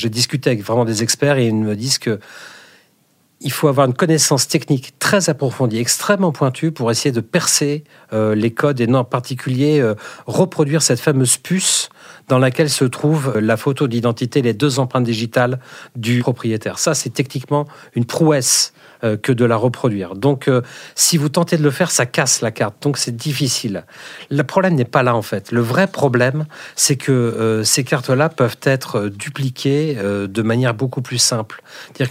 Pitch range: 115-150 Hz